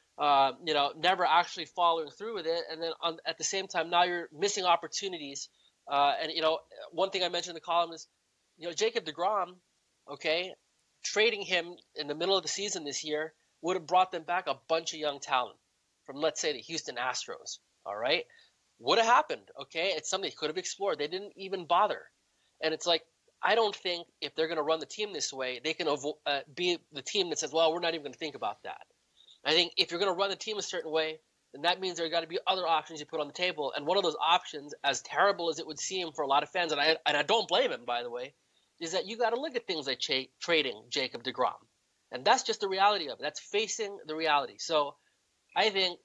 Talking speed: 245 wpm